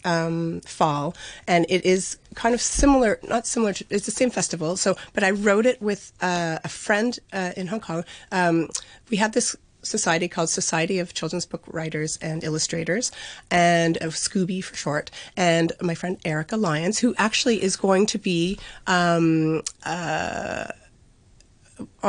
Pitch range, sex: 165-200 Hz, female